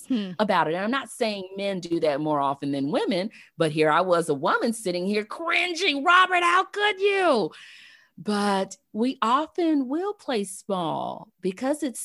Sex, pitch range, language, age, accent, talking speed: female, 140-215 Hz, English, 30-49, American, 170 wpm